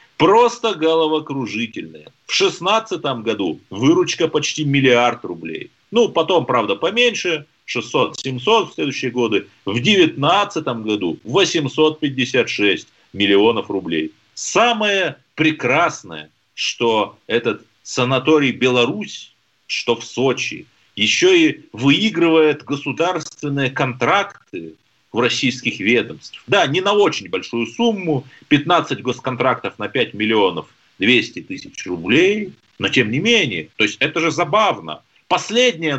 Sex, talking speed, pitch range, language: male, 110 wpm, 125-165 Hz, Russian